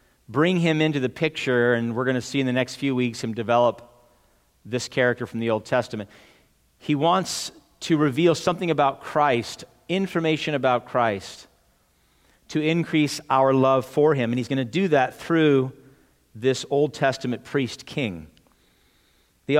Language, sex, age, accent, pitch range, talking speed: English, male, 40-59, American, 120-155 Hz, 160 wpm